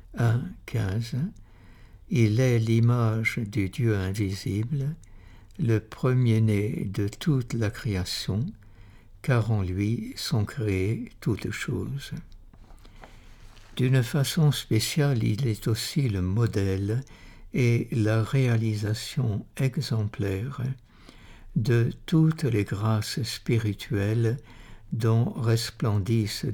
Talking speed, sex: 85 wpm, male